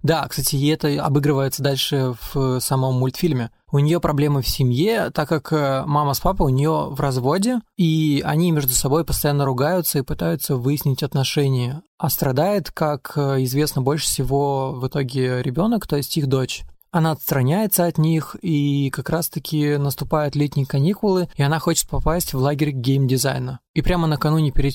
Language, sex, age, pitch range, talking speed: Russian, male, 20-39, 135-160 Hz, 160 wpm